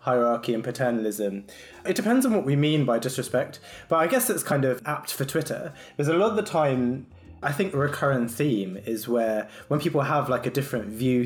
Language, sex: English, male